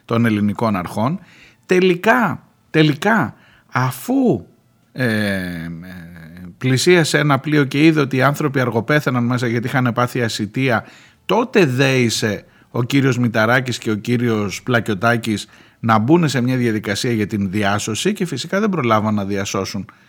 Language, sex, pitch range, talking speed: Greek, male, 110-150 Hz, 130 wpm